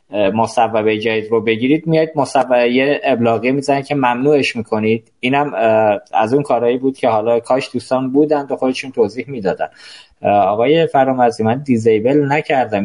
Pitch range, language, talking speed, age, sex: 110-140 Hz, Persian, 145 wpm, 20-39, male